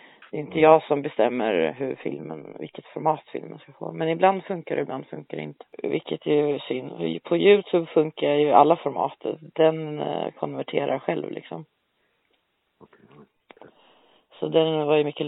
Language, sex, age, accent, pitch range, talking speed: Swedish, female, 30-49, native, 150-175 Hz, 160 wpm